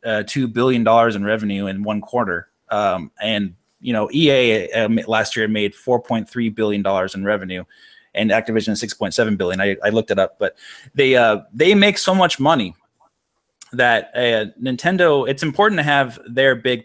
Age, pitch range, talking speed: 20-39, 105-130 Hz, 190 wpm